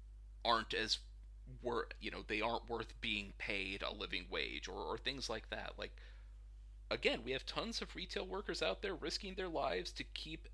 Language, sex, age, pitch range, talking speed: English, male, 30-49, 75-120 Hz, 180 wpm